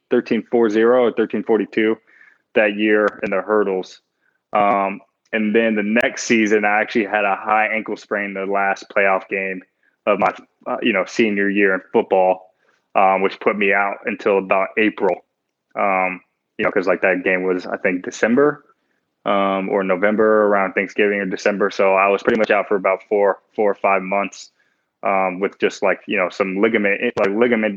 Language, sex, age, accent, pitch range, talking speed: English, male, 20-39, American, 95-110 Hz, 185 wpm